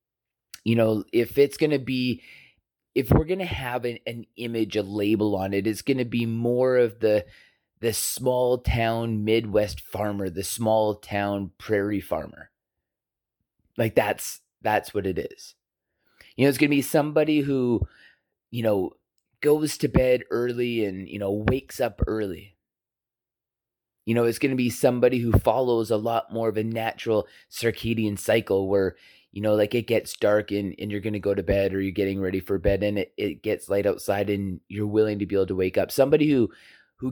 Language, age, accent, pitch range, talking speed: English, 30-49, American, 100-120 Hz, 190 wpm